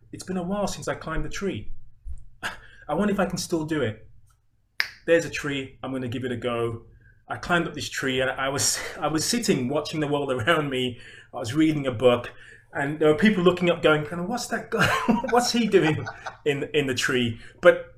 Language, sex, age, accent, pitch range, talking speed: English, male, 30-49, British, 120-175 Hz, 225 wpm